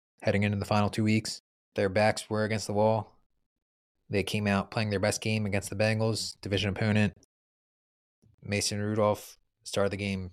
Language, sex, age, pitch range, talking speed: English, male, 20-39, 100-110 Hz, 170 wpm